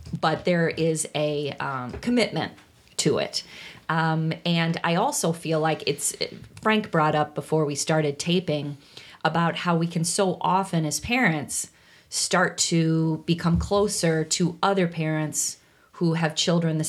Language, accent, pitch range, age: English, American, 155-180 Hz, 30-49